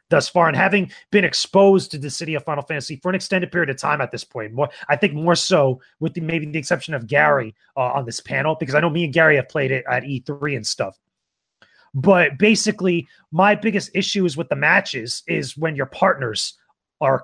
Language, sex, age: English, male, 30-49